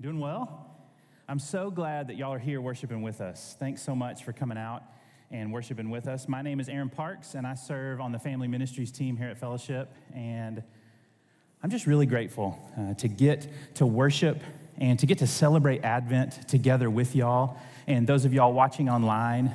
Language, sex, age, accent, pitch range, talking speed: English, male, 30-49, American, 120-150 Hz, 195 wpm